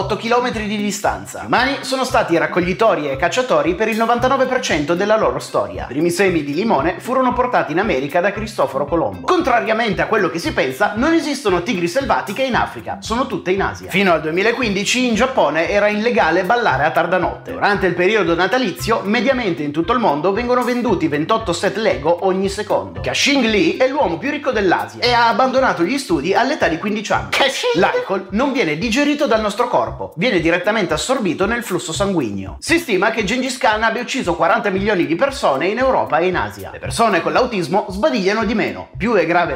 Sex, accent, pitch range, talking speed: male, native, 190-260 Hz, 190 wpm